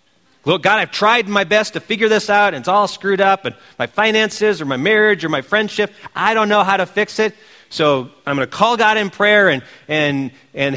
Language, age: English, 40-59